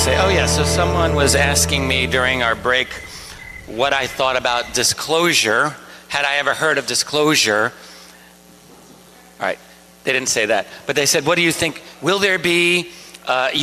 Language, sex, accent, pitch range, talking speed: English, male, American, 105-140 Hz, 165 wpm